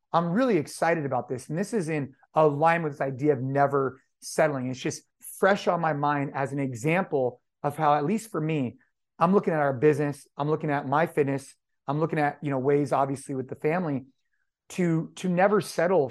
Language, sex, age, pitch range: English, male, 30-49, 140-180 Hz